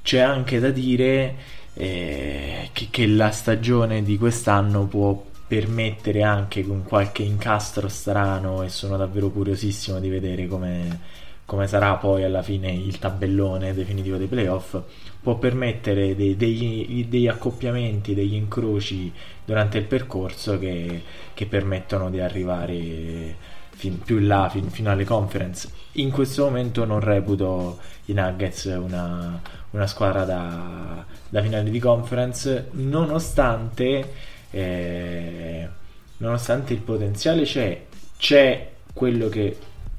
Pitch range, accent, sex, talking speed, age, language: 90-110 Hz, native, male, 120 wpm, 20-39, Italian